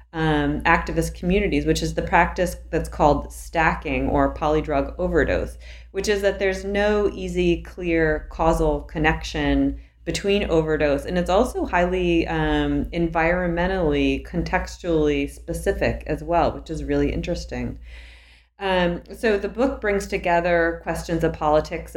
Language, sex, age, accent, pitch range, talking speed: English, female, 30-49, American, 145-170 Hz, 130 wpm